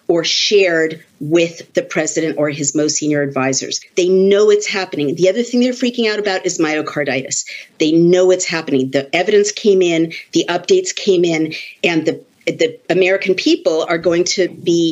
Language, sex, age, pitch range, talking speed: English, female, 50-69, 155-210 Hz, 175 wpm